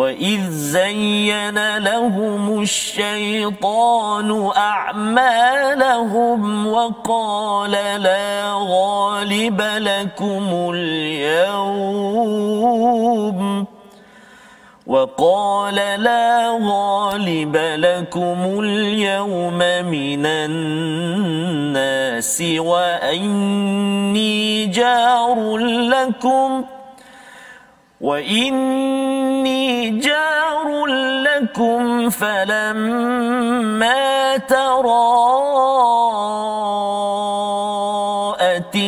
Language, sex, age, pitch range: Malayalam, male, 40-59, 200-235 Hz